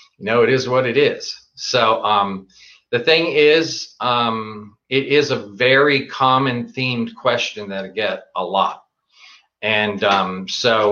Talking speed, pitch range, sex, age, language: 150 wpm, 105-135 Hz, male, 40-59, English